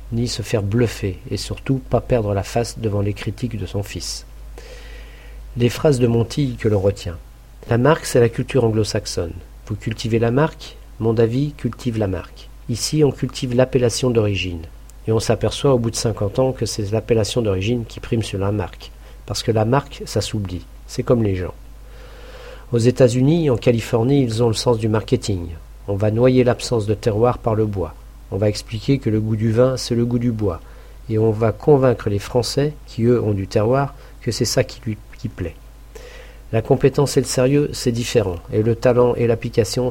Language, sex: French, male